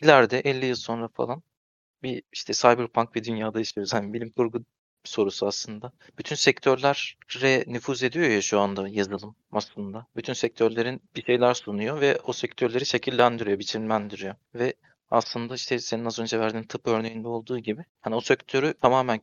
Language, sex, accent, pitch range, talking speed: Turkish, male, native, 105-120 Hz, 160 wpm